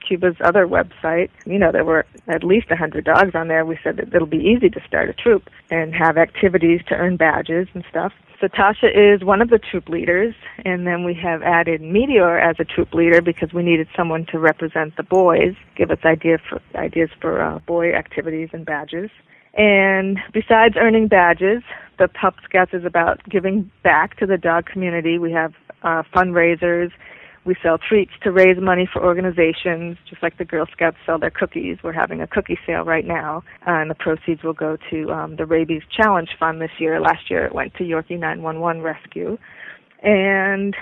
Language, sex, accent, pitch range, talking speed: English, female, American, 165-190 Hz, 190 wpm